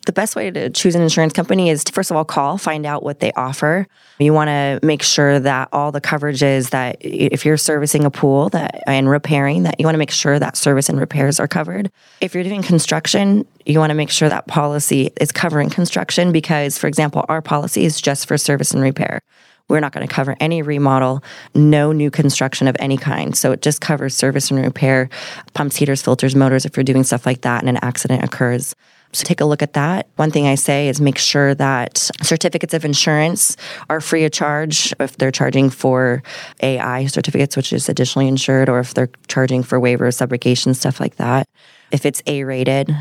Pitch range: 130-155 Hz